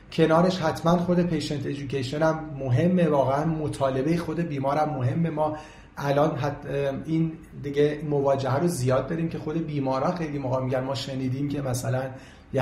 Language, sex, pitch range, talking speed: Persian, male, 130-155 Hz, 150 wpm